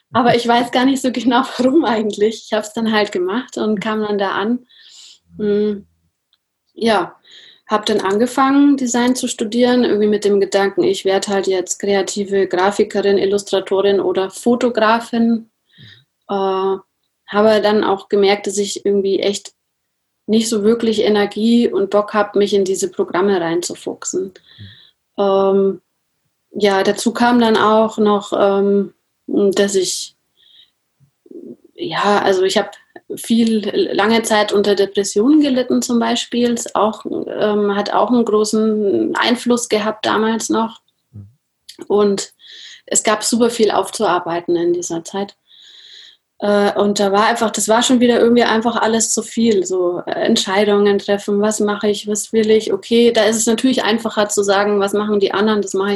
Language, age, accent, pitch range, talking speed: German, 30-49, German, 200-230 Hz, 150 wpm